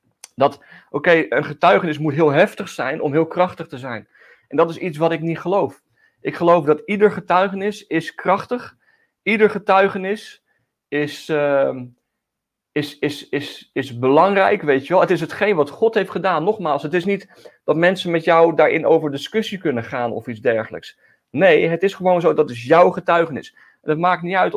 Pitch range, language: 140-175 Hz, Dutch